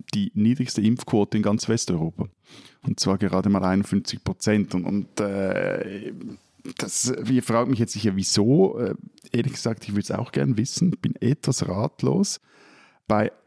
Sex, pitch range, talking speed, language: male, 100-125 Hz, 145 wpm, German